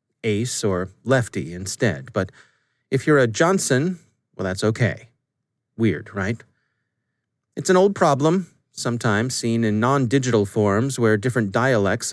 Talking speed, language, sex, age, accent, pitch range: 130 wpm, English, male, 30-49, American, 110-135 Hz